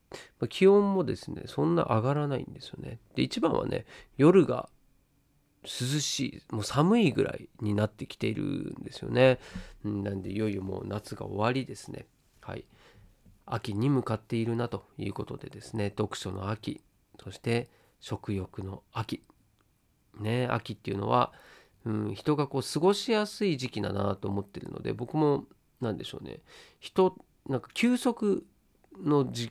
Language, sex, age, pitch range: Japanese, male, 40-59, 105-155 Hz